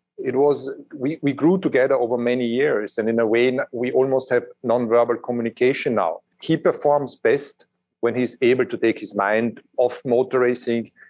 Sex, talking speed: male, 175 wpm